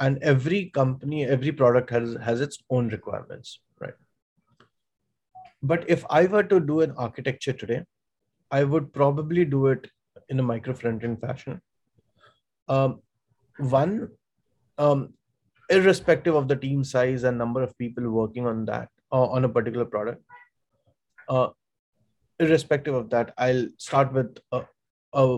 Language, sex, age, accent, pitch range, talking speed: English, male, 20-39, Indian, 120-145 Hz, 135 wpm